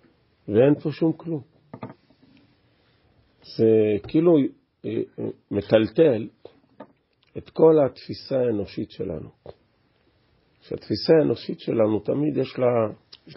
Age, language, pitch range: 50-69, Hebrew, 100-160 Hz